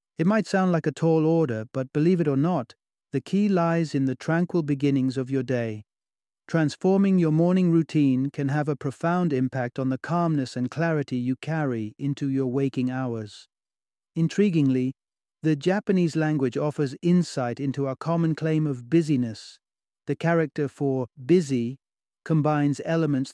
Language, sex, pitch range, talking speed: English, male, 135-160 Hz, 155 wpm